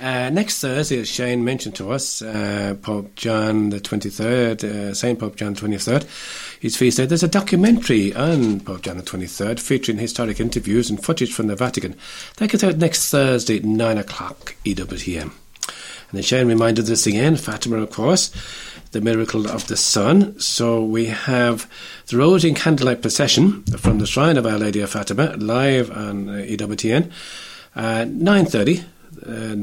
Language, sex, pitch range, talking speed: English, male, 105-130 Hz, 170 wpm